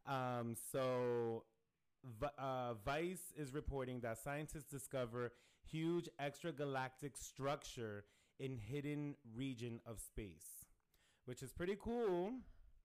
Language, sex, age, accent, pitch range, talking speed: English, male, 30-49, American, 115-145 Hz, 105 wpm